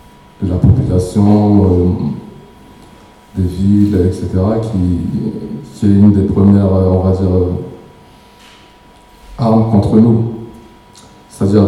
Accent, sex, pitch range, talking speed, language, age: French, male, 95-110 Hz, 115 wpm, French, 20-39